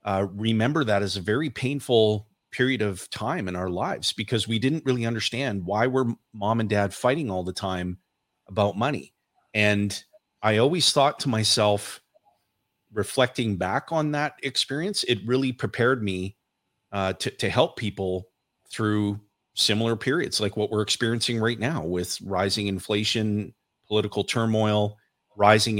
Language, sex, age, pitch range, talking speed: English, male, 30-49, 95-115 Hz, 150 wpm